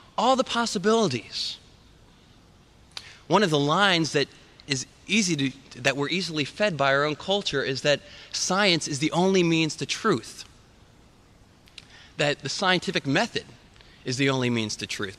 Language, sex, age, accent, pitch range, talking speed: English, male, 30-49, American, 130-190 Hz, 150 wpm